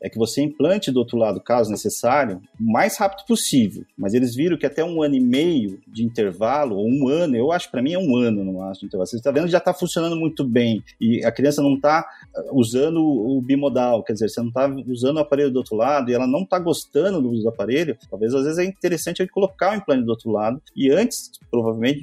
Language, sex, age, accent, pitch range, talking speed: Portuguese, male, 40-59, Brazilian, 115-160 Hz, 240 wpm